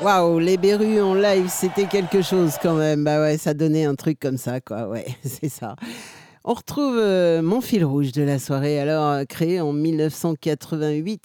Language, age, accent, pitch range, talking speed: French, 60-79, French, 135-175 Hz, 180 wpm